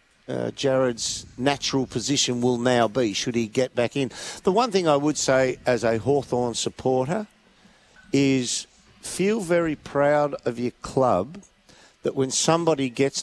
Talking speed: 150 wpm